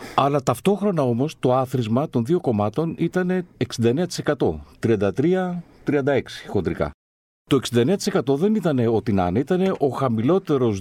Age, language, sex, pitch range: 50-69, Greek, male, 105-165 Hz